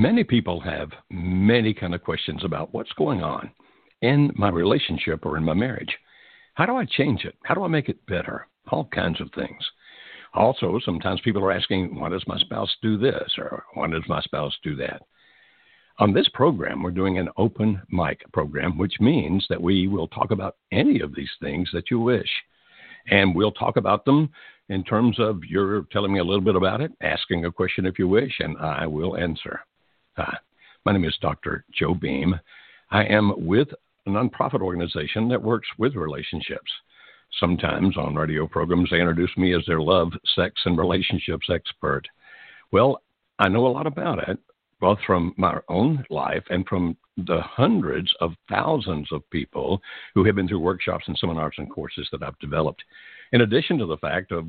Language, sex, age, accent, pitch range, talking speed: English, male, 60-79, American, 85-105 Hz, 185 wpm